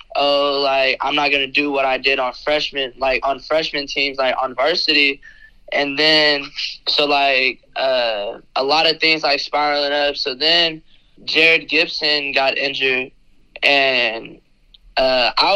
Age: 20-39